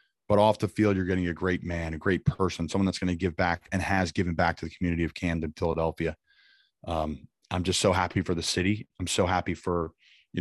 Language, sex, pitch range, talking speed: English, male, 85-95 Hz, 235 wpm